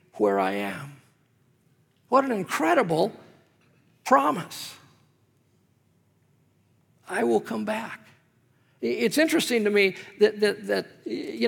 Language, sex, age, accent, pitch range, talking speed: English, male, 50-69, American, 155-235 Hz, 100 wpm